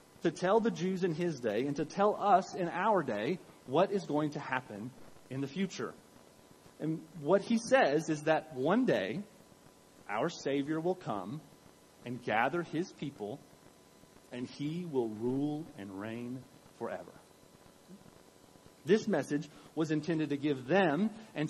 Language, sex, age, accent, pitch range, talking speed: English, male, 30-49, American, 135-180 Hz, 150 wpm